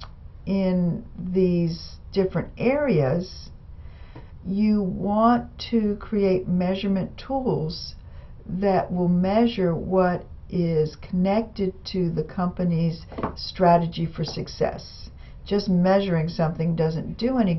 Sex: female